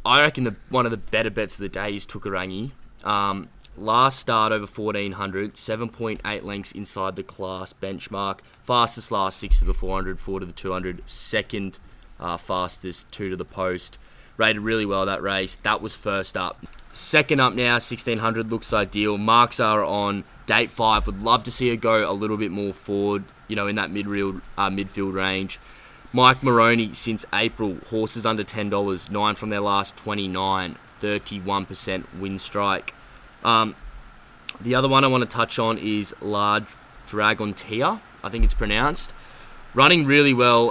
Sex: male